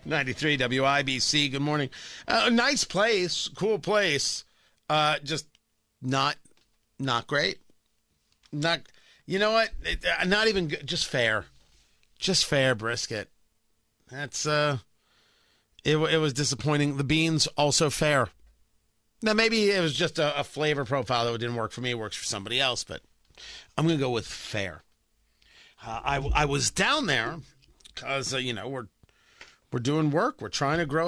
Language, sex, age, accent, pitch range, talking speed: English, male, 50-69, American, 120-160 Hz, 160 wpm